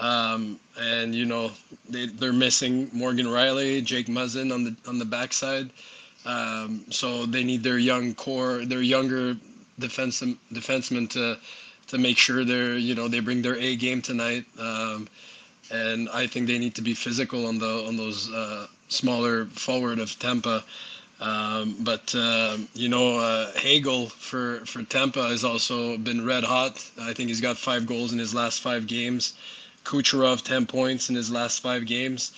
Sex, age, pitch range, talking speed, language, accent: male, 20-39, 115-125 Hz, 170 wpm, English, Canadian